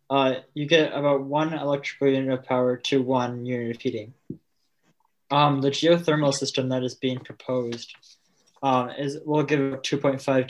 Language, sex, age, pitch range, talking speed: English, male, 20-39, 130-150 Hz, 155 wpm